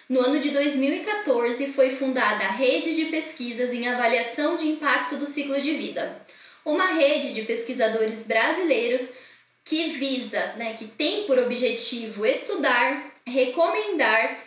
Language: Portuguese